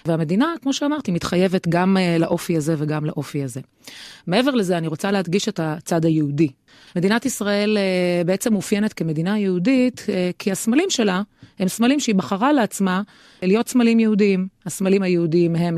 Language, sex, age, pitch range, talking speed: Hebrew, female, 30-49, 160-215 Hz, 145 wpm